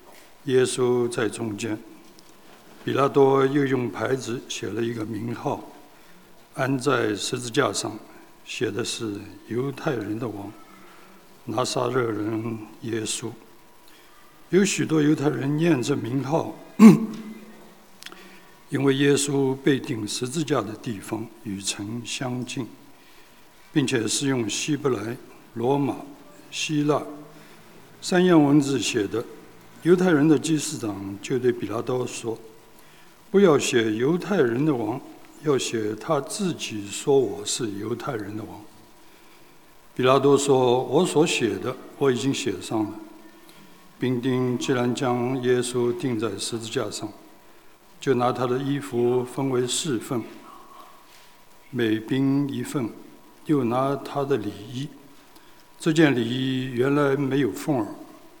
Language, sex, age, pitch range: English, male, 60-79, 115-150 Hz